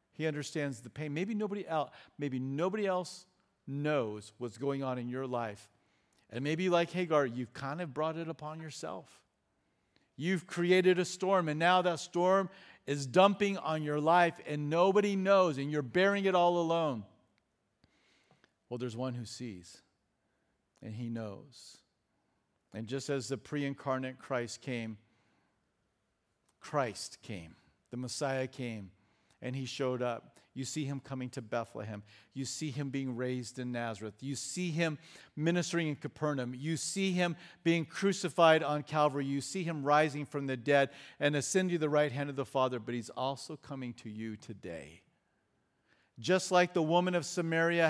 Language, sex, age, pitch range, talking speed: English, male, 50-69, 130-165 Hz, 160 wpm